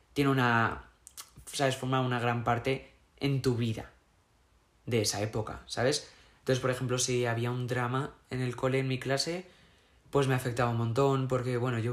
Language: Spanish